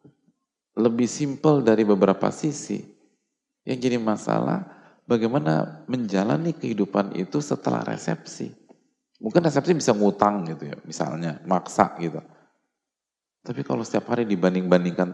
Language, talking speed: English, 110 wpm